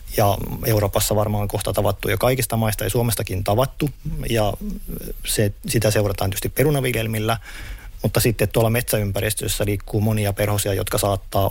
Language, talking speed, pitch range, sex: Finnish, 135 wpm, 105-125 Hz, male